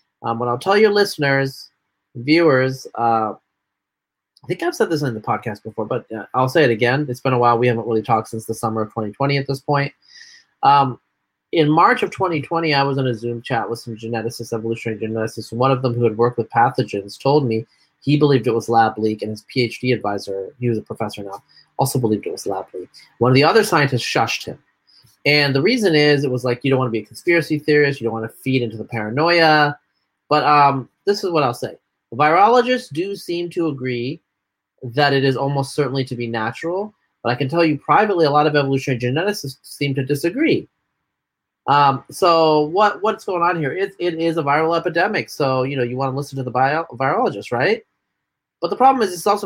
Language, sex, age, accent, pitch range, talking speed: English, male, 30-49, American, 115-160 Hz, 220 wpm